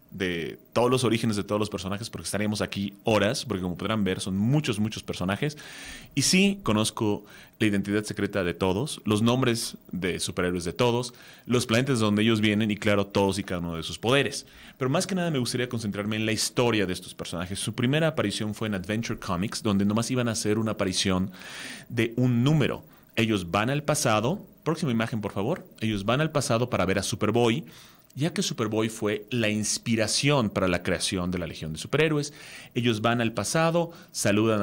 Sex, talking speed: male, 195 wpm